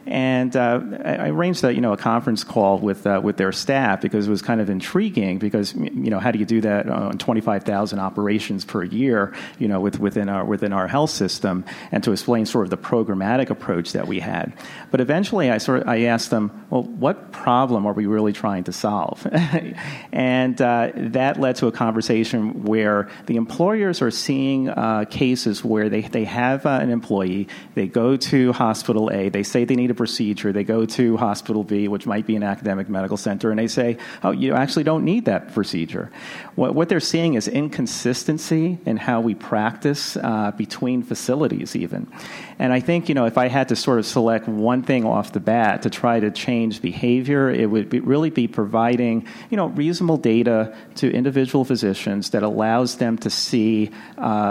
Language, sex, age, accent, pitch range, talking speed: English, male, 40-59, American, 105-130 Hz, 200 wpm